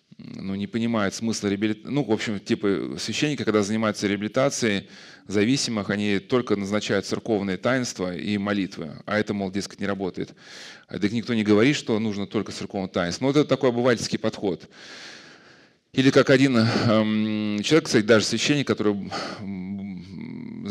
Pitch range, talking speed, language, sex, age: 100-125 Hz, 140 wpm, Russian, male, 30-49